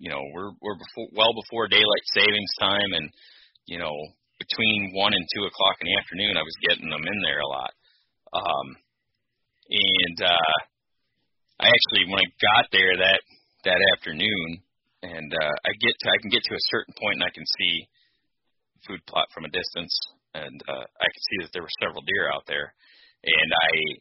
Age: 30-49